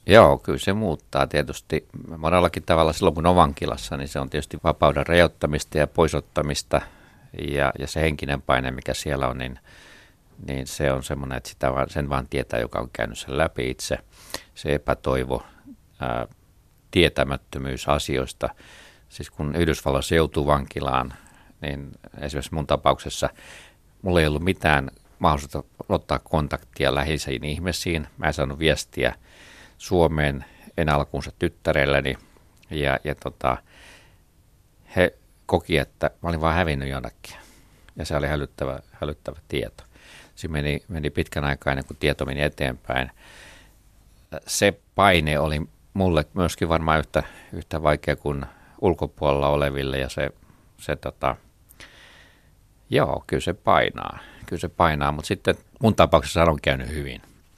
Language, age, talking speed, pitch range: Finnish, 50-69, 135 wpm, 70-80 Hz